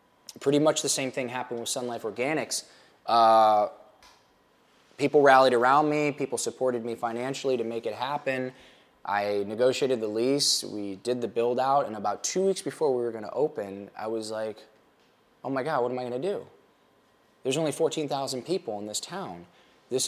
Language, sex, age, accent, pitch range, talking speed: English, male, 20-39, American, 100-135 Hz, 180 wpm